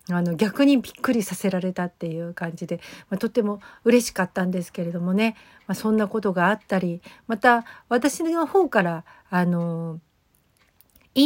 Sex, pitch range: female, 175-230 Hz